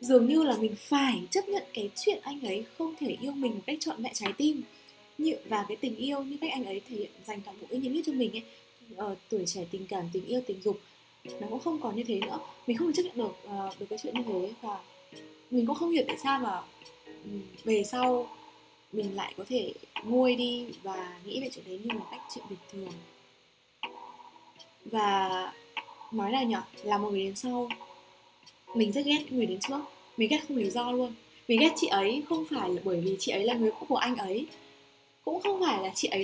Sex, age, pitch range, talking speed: female, 20-39, 195-275 Hz, 230 wpm